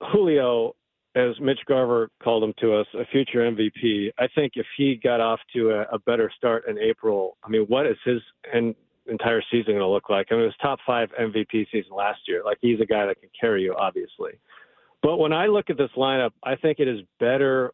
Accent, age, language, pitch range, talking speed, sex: American, 50-69, English, 110-140 Hz, 225 wpm, male